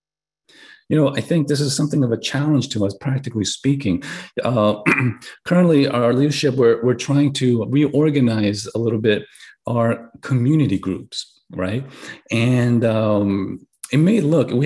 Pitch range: 125-165 Hz